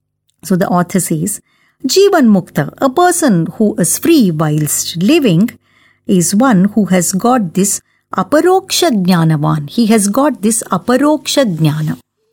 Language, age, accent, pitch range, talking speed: English, 50-69, Indian, 175-275 Hz, 135 wpm